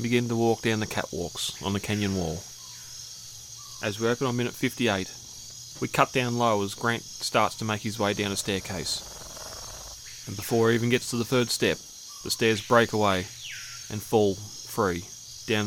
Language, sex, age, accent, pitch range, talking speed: English, male, 20-39, Australian, 100-120 Hz, 180 wpm